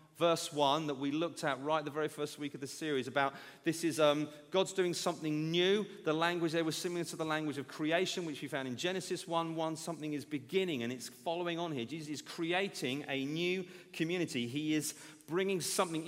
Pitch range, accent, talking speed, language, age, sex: 145-185 Hz, British, 210 wpm, English, 40-59, male